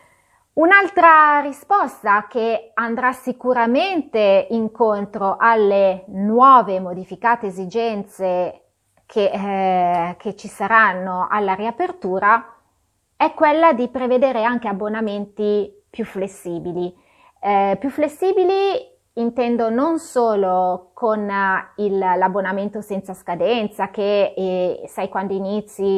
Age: 30-49